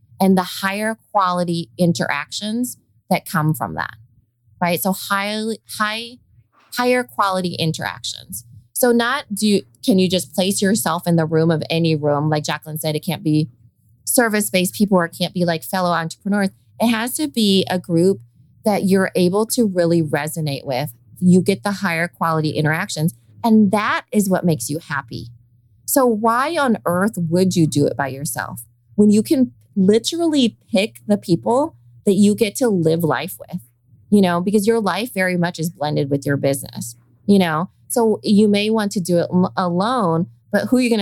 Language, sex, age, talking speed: English, female, 20-39, 180 wpm